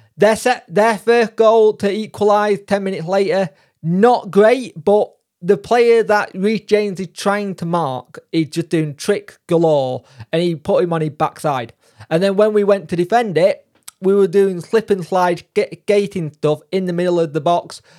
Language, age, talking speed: English, 20-39, 190 wpm